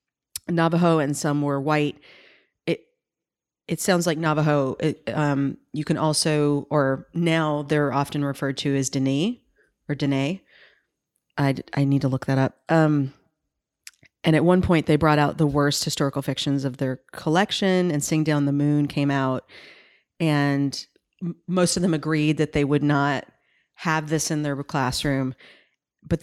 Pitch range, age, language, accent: 140-165 Hz, 40-59, English, American